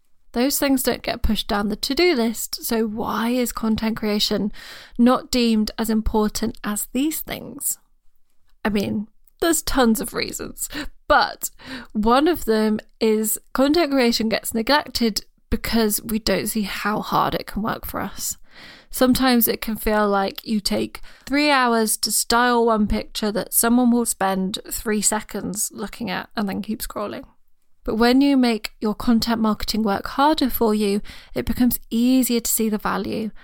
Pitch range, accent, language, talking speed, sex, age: 215-255 Hz, British, English, 160 wpm, female, 20-39